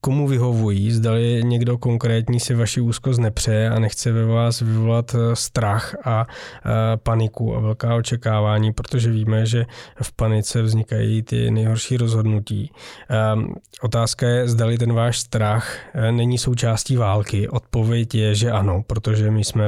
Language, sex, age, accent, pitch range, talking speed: Czech, male, 20-39, native, 110-120 Hz, 135 wpm